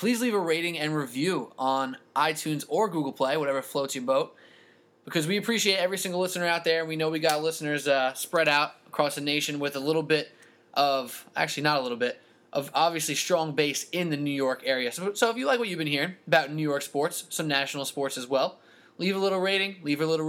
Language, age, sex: English, 20-39, male